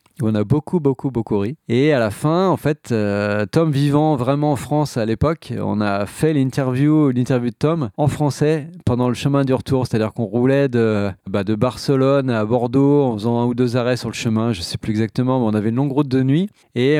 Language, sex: French, male